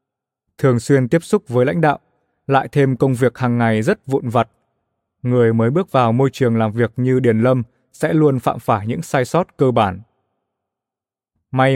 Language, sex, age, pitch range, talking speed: Vietnamese, male, 20-39, 115-140 Hz, 190 wpm